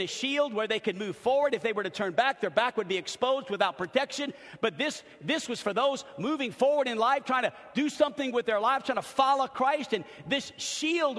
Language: English